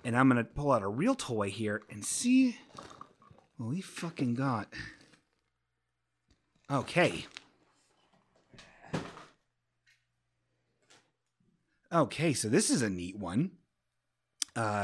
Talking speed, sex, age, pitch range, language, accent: 100 wpm, male, 30-49, 120-175 Hz, English, American